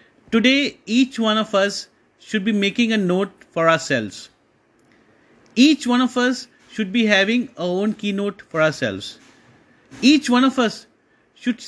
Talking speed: 150 wpm